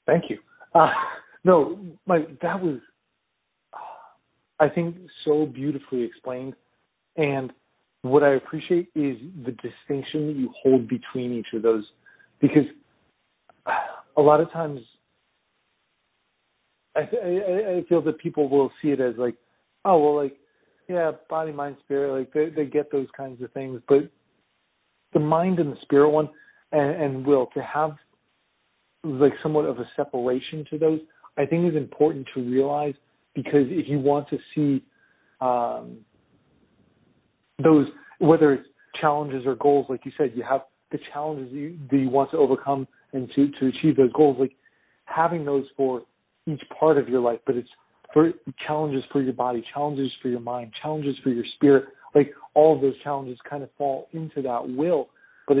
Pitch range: 130-155 Hz